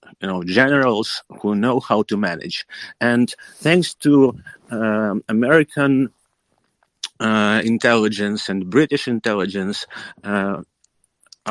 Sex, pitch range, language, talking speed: male, 100-125 Hz, English, 100 wpm